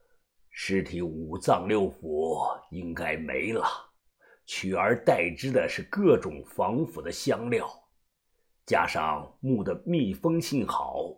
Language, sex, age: Chinese, male, 50-69